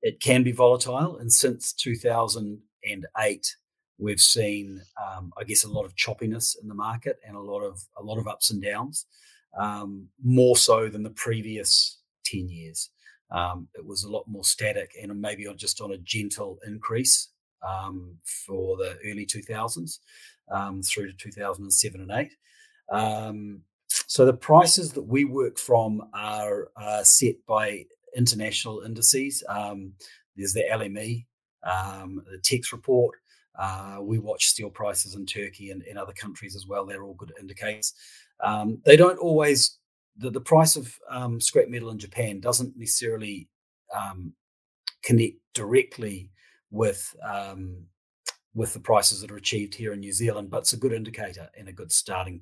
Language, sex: English, male